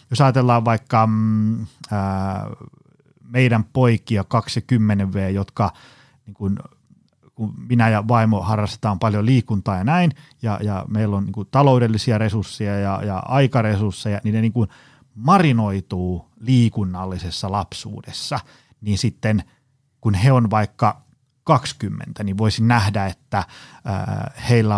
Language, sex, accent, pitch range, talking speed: Finnish, male, native, 105-135 Hz, 95 wpm